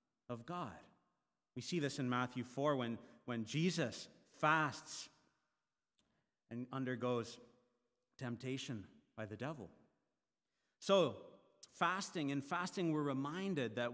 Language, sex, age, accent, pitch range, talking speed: English, male, 40-59, American, 120-160 Hz, 110 wpm